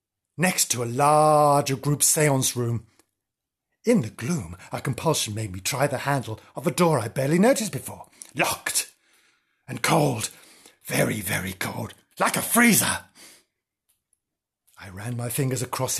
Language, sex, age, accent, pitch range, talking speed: English, male, 50-69, British, 125-155 Hz, 145 wpm